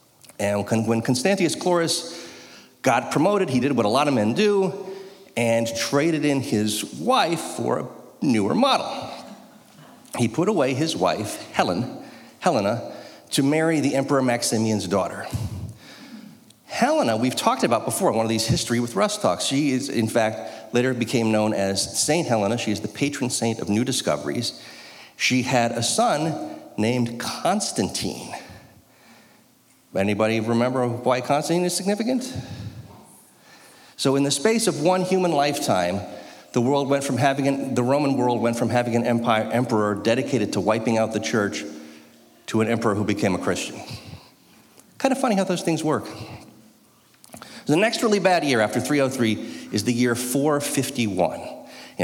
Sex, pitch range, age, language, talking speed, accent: male, 110-145 Hz, 40-59, English, 155 wpm, American